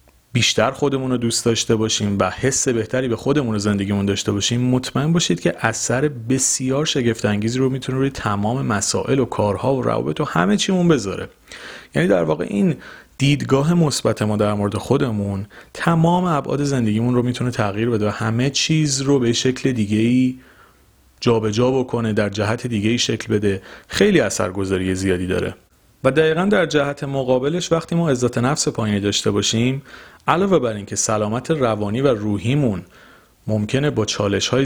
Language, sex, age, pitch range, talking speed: Persian, male, 30-49, 105-130 Hz, 165 wpm